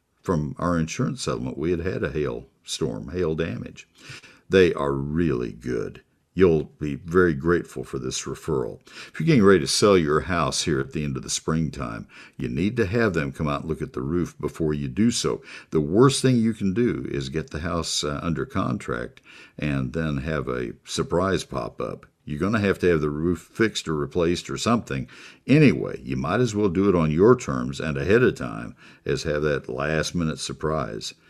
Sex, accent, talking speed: male, American, 205 wpm